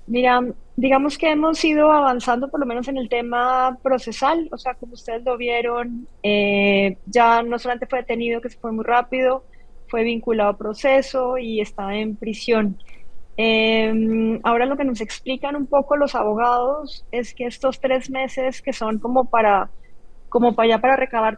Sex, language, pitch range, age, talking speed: female, Spanish, 220-260 Hz, 20-39, 175 wpm